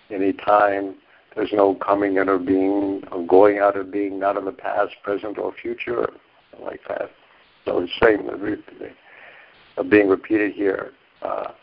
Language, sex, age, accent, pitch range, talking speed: English, male, 60-79, American, 100-140 Hz, 155 wpm